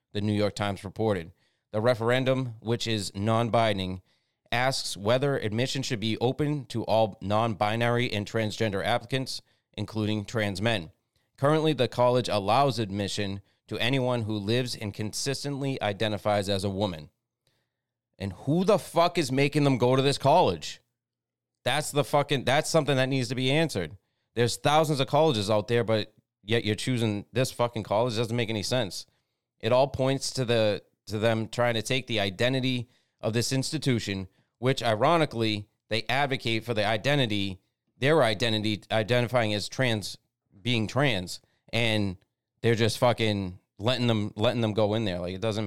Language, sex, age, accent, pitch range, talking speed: English, male, 30-49, American, 105-130 Hz, 160 wpm